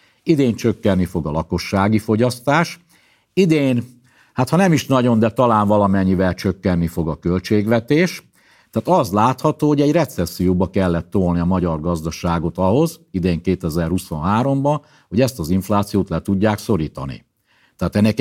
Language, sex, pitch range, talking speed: Hungarian, male, 95-130 Hz, 140 wpm